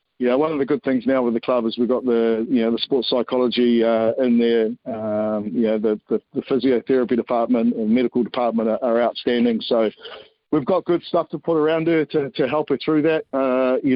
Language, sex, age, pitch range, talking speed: English, male, 50-69, 120-140 Hz, 220 wpm